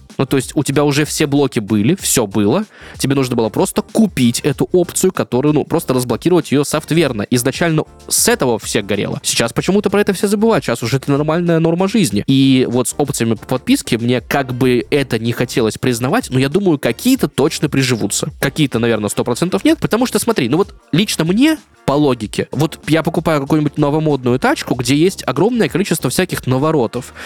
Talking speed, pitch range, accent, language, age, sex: 190 wpm, 125-170 Hz, native, Russian, 20-39, male